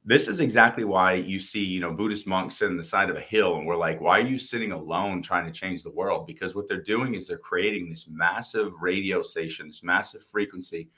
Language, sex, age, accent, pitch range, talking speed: English, male, 30-49, American, 90-110 Hz, 240 wpm